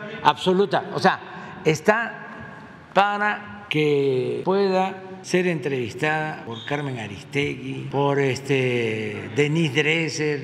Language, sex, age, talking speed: Spanish, male, 60-79, 90 wpm